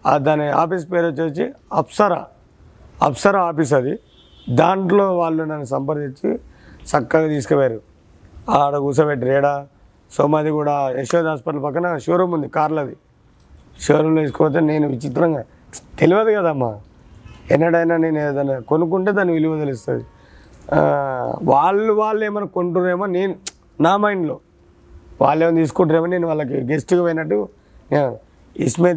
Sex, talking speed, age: male, 110 wpm, 30-49